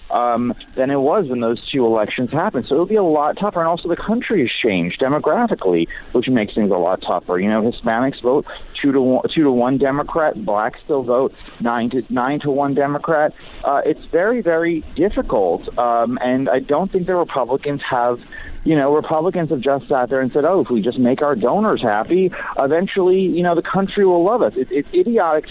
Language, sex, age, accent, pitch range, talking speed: English, male, 40-59, American, 125-175 Hz, 210 wpm